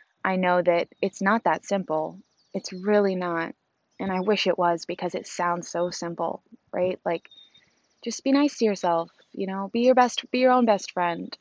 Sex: female